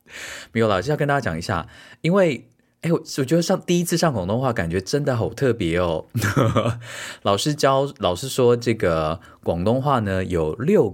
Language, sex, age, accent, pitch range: Chinese, male, 20-39, native, 90-135 Hz